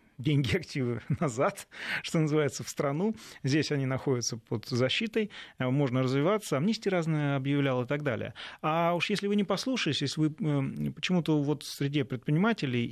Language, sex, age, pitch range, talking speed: Russian, male, 30-49, 125-165 Hz, 150 wpm